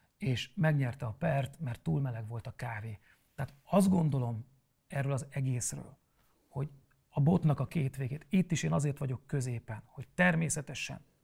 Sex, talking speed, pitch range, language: male, 160 wpm, 130-165 Hz, Hungarian